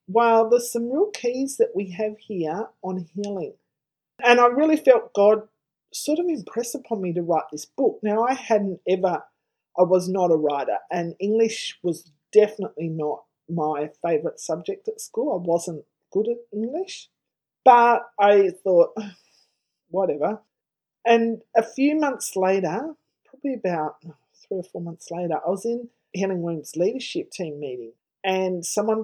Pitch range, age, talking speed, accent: 175-235 Hz, 30-49, 155 wpm, Australian